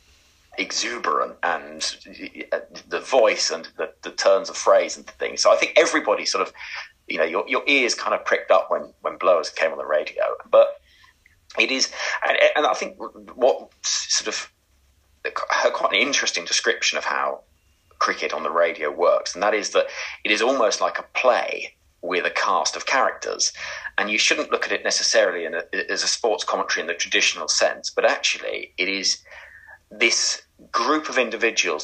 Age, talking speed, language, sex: 30-49, 175 wpm, English, male